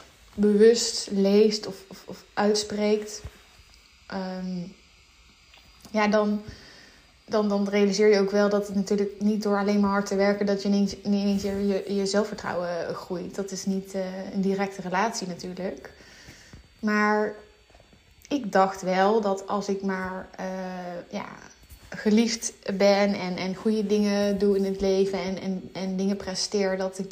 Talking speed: 150 wpm